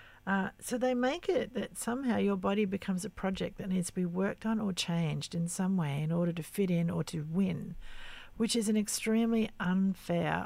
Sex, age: female, 50-69